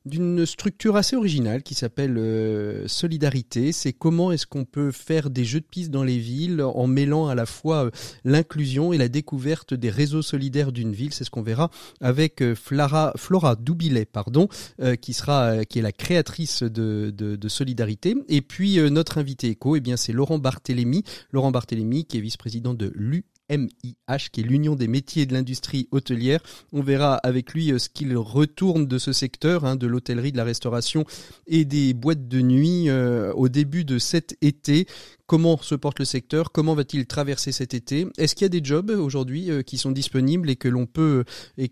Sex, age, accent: male, 40-59, French